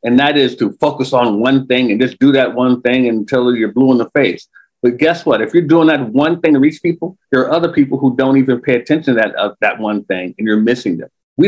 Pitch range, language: 120-180 Hz, English